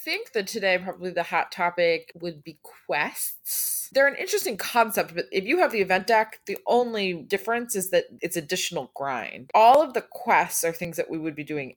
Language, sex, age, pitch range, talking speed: English, female, 20-39, 150-200 Hz, 210 wpm